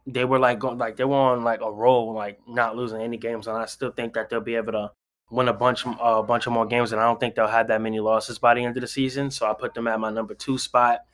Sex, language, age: male, English, 10-29